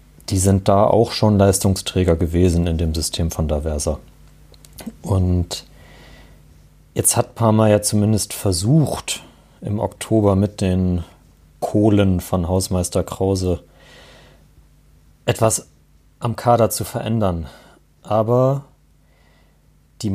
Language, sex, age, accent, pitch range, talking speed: German, male, 30-49, German, 95-115 Hz, 100 wpm